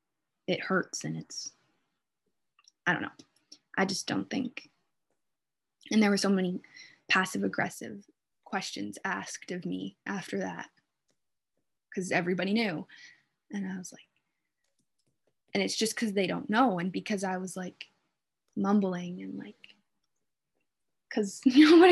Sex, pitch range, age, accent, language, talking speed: female, 180-210 Hz, 20-39, American, English, 130 wpm